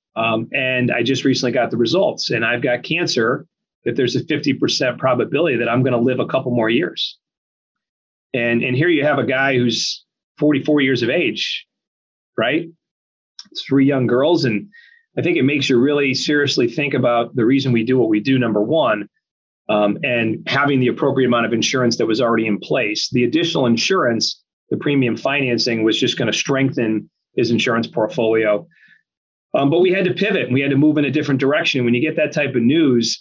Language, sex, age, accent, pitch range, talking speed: English, male, 40-59, American, 120-140 Hz, 200 wpm